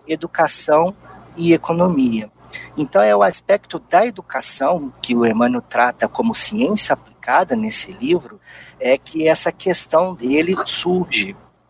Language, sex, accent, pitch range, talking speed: Portuguese, male, Brazilian, 120-180 Hz, 125 wpm